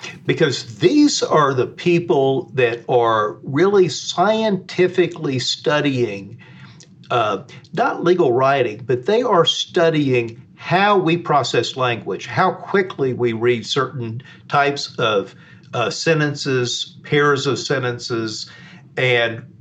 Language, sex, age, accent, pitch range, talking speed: English, male, 50-69, American, 125-175 Hz, 105 wpm